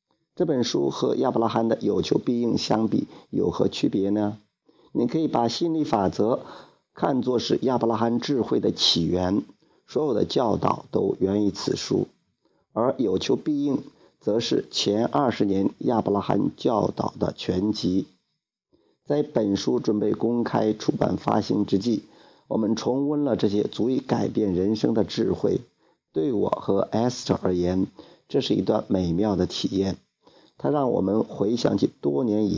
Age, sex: 50-69, male